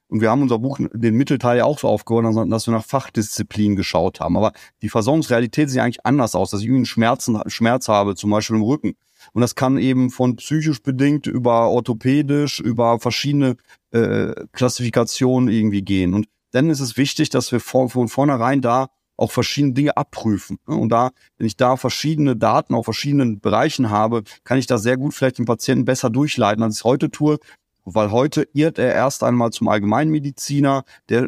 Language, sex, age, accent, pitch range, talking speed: German, male, 30-49, German, 115-135 Hz, 190 wpm